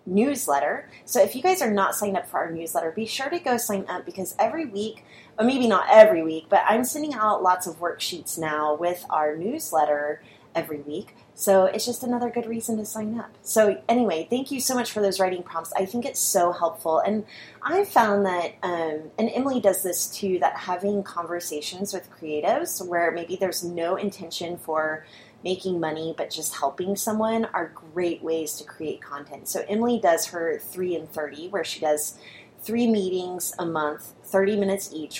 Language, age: English, 30-49